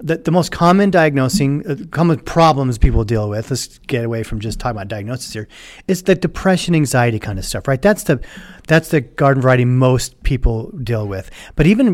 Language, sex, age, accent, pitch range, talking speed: English, male, 40-59, American, 120-165 Hz, 200 wpm